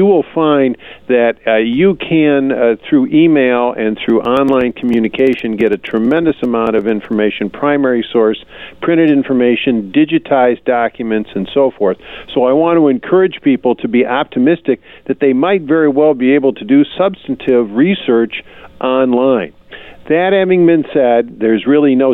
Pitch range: 110-145 Hz